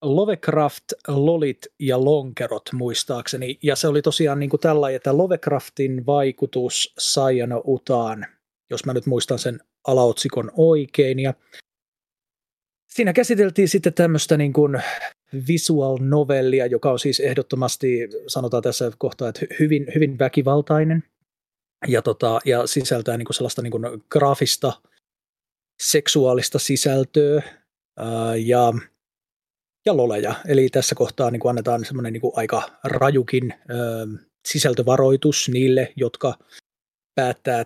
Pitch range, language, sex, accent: 125-150 Hz, Finnish, male, native